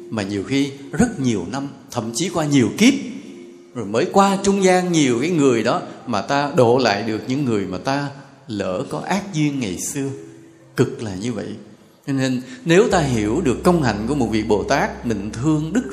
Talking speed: 205 wpm